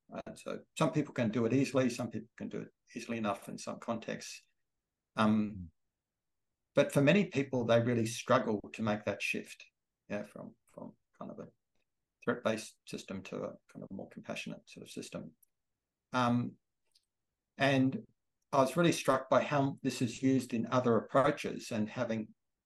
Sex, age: male, 50-69